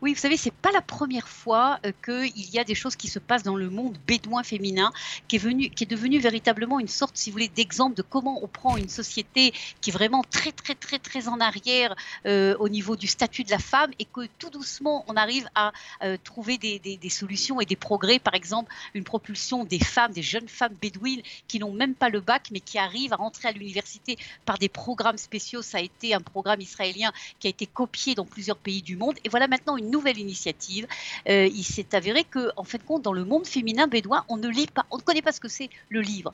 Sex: female